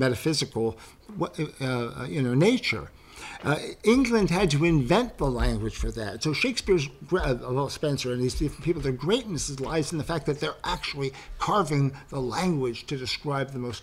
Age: 50-69